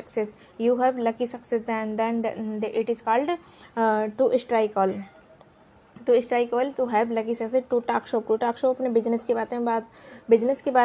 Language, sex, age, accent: Hindi, female, 20-39, native